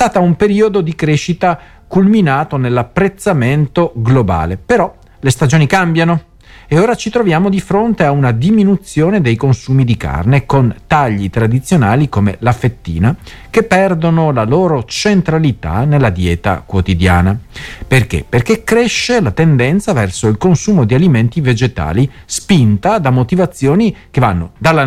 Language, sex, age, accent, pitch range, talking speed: Italian, male, 50-69, native, 105-160 Hz, 140 wpm